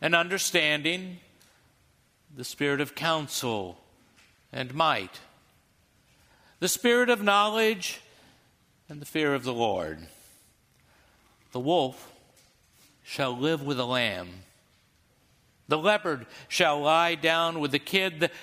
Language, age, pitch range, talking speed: English, 60-79, 135-190 Hz, 110 wpm